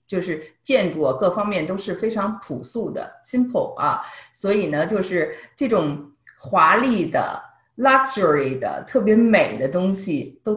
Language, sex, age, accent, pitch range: Chinese, female, 50-69, native, 150-215 Hz